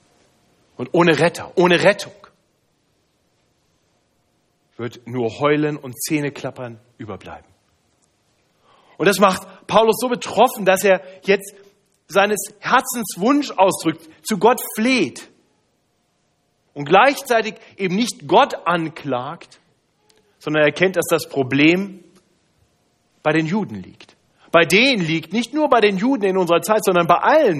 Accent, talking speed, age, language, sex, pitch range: German, 120 wpm, 40-59, German, male, 140-195 Hz